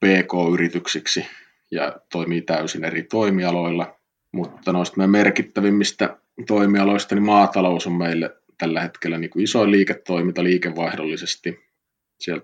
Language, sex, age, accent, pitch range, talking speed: English, male, 30-49, Finnish, 85-100 Hz, 100 wpm